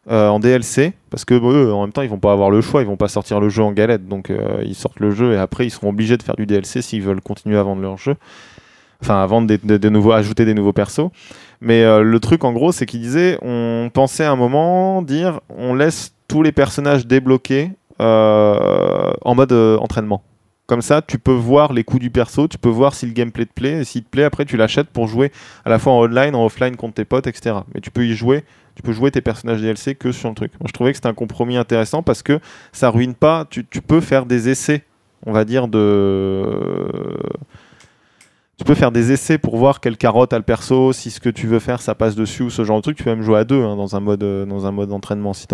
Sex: male